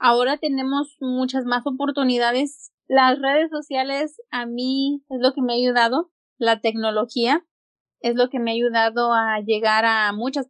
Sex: female